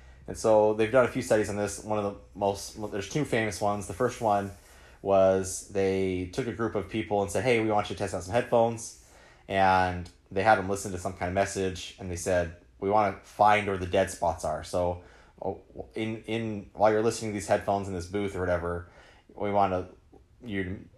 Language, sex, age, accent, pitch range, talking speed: English, male, 30-49, American, 85-105 Hz, 225 wpm